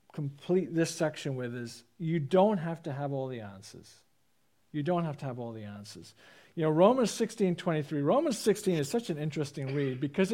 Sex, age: male, 50-69